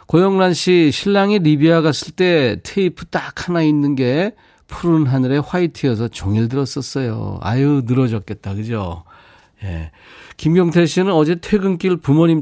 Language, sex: Korean, male